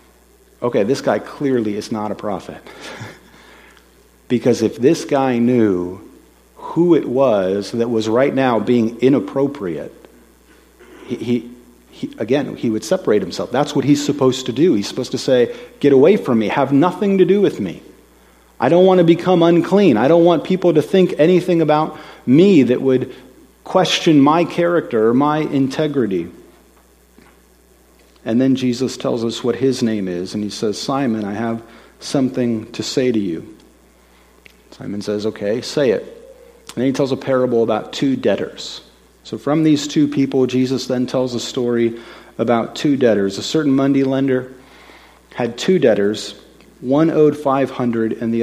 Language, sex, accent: English, male, American